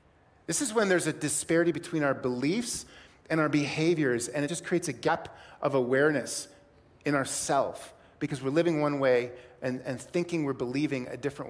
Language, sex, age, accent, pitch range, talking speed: English, male, 30-49, American, 140-190 Hz, 175 wpm